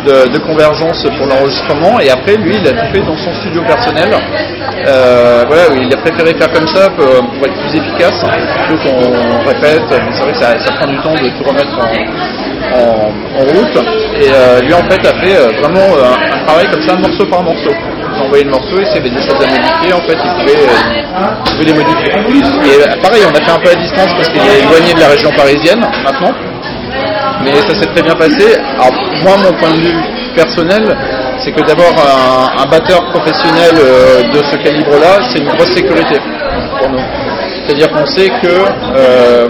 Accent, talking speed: French, 205 wpm